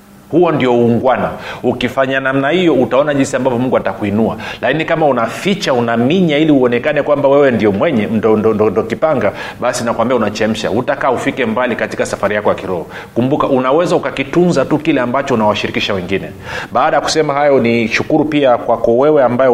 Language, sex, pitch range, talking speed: Swahili, male, 110-145 Hz, 170 wpm